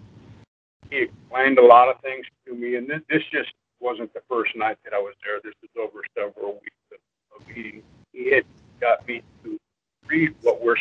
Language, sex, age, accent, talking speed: English, male, 50-69, American, 195 wpm